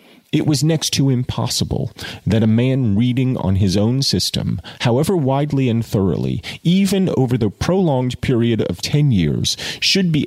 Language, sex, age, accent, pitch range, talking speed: English, male, 40-59, American, 105-150 Hz, 160 wpm